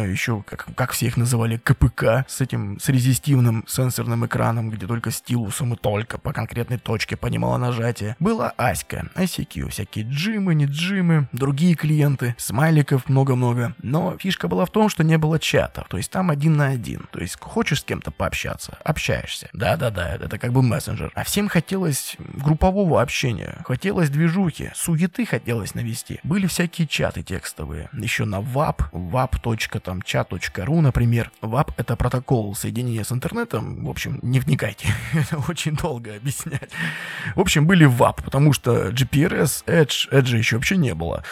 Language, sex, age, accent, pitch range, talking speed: Russian, male, 20-39, native, 115-150 Hz, 155 wpm